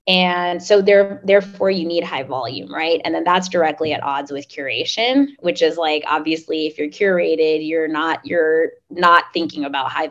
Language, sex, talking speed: English, female, 170 wpm